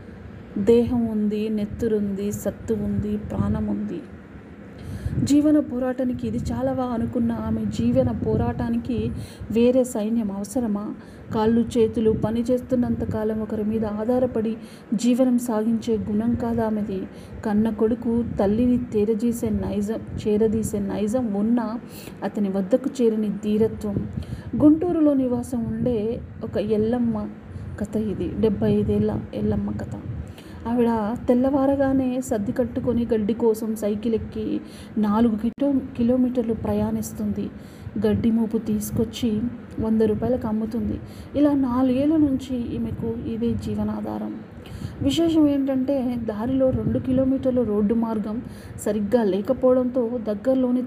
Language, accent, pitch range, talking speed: Telugu, native, 200-245 Hz, 105 wpm